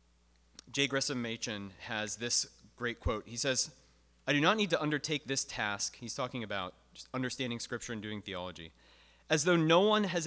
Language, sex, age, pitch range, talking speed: English, male, 30-49, 100-140 Hz, 175 wpm